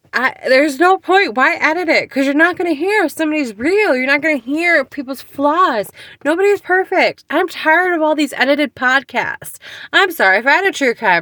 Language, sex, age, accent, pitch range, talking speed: English, female, 20-39, American, 205-310 Hz, 215 wpm